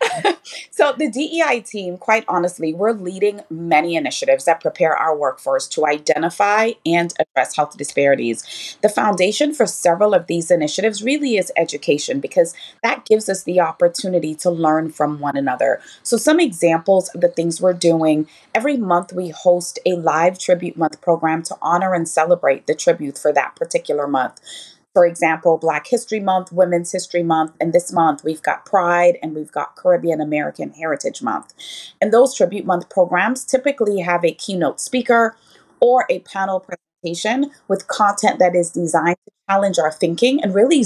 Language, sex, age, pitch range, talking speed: English, female, 30-49, 165-220 Hz, 165 wpm